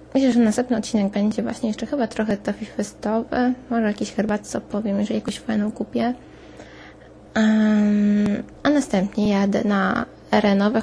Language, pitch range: Polish, 200-235 Hz